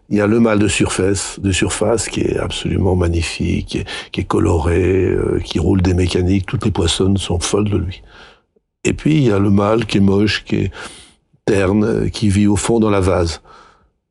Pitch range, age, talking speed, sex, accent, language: 95-110 Hz, 60-79, 215 wpm, male, French, French